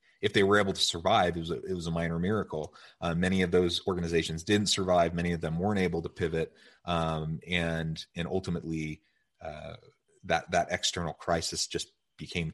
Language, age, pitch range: English, 30-49, 85-105 Hz